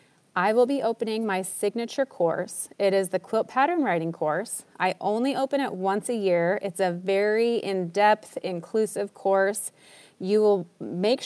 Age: 30-49